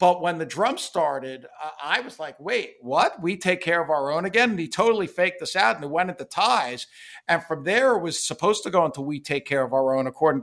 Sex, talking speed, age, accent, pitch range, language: male, 255 wpm, 50-69, American, 135-180 Hz, English